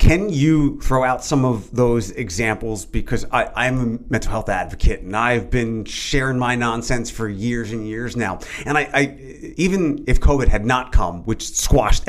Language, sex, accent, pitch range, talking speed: English, male, American, 110-140 Hz, 185 wpm